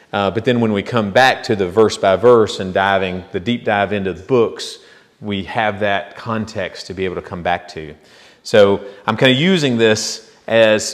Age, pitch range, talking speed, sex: 40-59, 100-120 Hz, 205 wpm, male